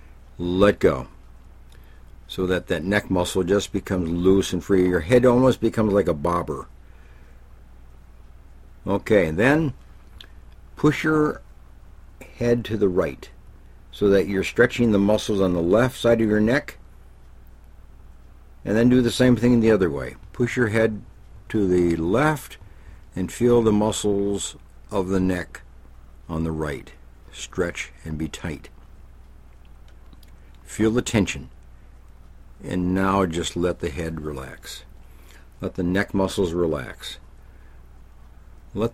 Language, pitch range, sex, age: English, 70-100 Hz, male, 60-79